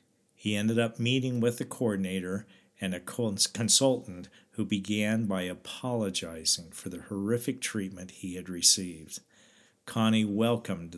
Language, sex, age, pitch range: English, male, 50-69, 95-125 Hz